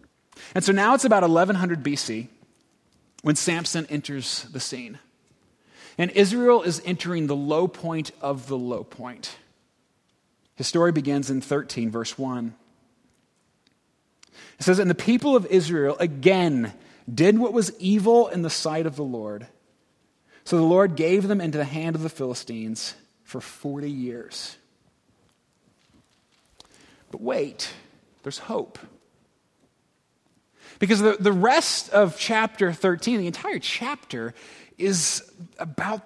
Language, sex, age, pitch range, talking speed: English, male, 30-49, 145-200 Hz, 130 wpm